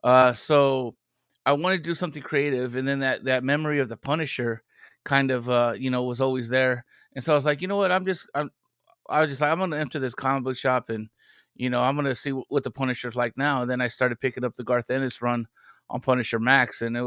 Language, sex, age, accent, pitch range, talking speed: English, male, 30-49, American, 120-140 Hz, 265 wpm